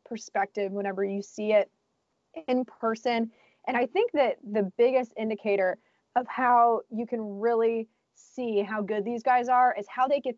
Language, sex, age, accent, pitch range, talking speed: English, female, 20-39, American, 205-245 Hz, 170 wpm